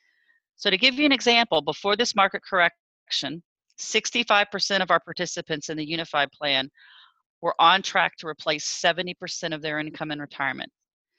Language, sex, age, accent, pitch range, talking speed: English, female, 40-59, American, 155-200 Hz, 155 wpm